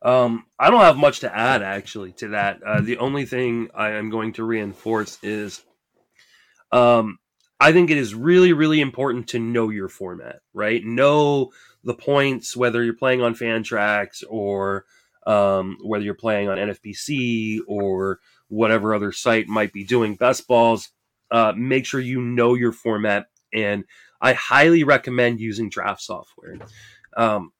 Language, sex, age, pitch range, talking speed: English, male, 20-39, 110-135 Hz, 160 wpm